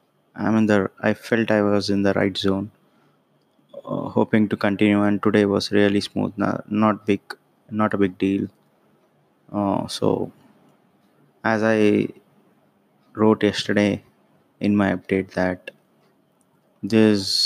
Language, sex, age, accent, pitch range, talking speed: English, male, 20-39, Indian, 100-105 Hz, 115 wpm